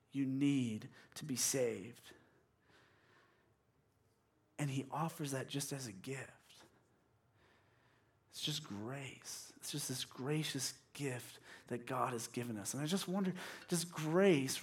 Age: 30-49